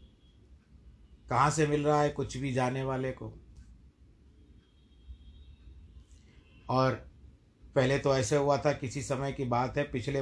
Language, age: Hindi, 50-69